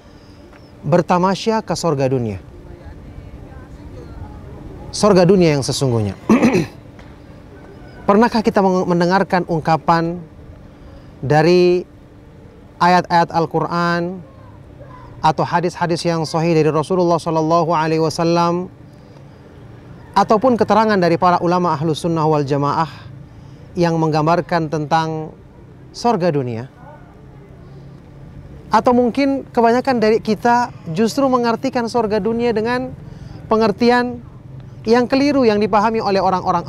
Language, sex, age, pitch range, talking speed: Indonesian, male, 30-49, 140-185 Hz, 90 wpm